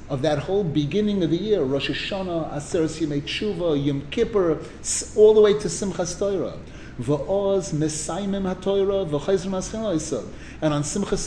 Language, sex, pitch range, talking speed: English, male, 155-200 Hz, 115 wpm